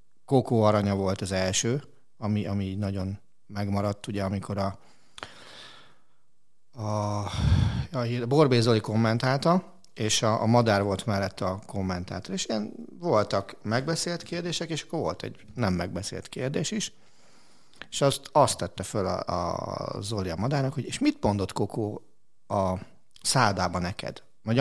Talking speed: 140 wpm